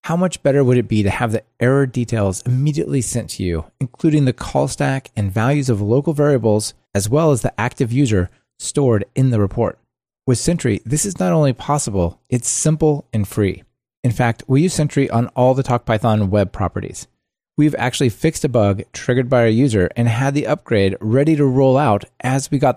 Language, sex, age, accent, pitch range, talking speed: English, male, 30-49, American, 105-140 Hz, 200 wpm